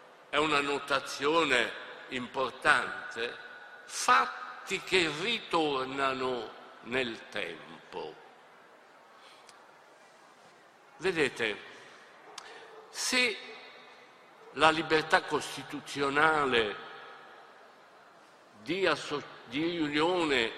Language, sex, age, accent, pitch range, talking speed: Italian, male, 60-79, native, 145-210 Hz, 50 wpm